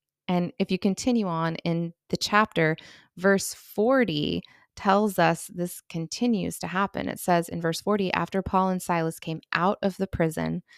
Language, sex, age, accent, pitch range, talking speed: English, female, 20-39, American, 165-210 Hz, 165 wpm